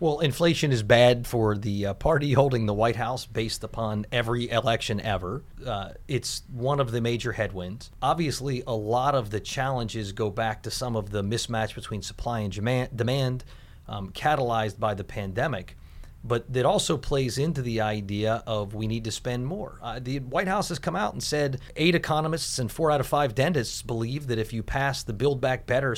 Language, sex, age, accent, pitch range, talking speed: English, male, 30-49, American, 110-135 Hz, 195 wpm